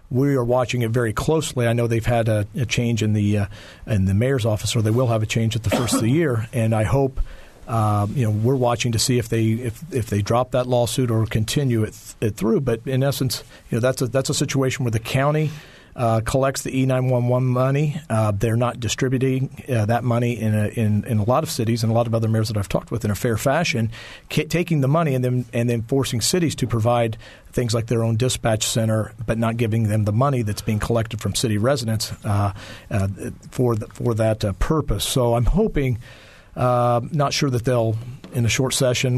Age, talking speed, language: 40-59, 235 wpm, English